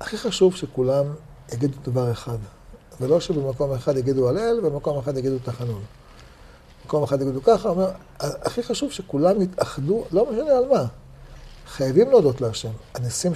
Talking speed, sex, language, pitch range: 155 wpm, male, Hebrew, 130-195 Hz